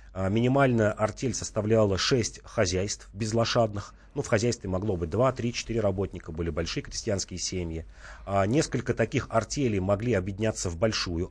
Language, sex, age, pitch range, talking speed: Russian, male, 30-49, 90-120 Hz, 140 wpm